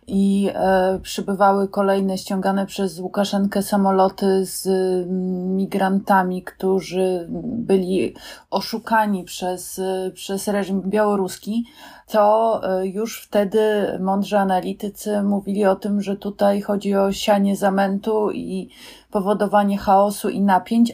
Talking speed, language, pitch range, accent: 110 wpm, Polish, 190-205 Hz, native